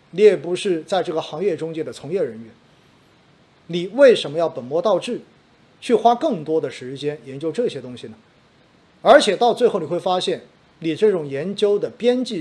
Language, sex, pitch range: Chinese, male, 160-220 Hz